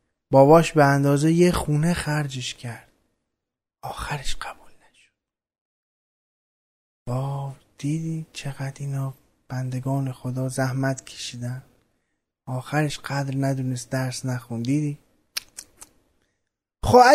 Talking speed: 90 wpm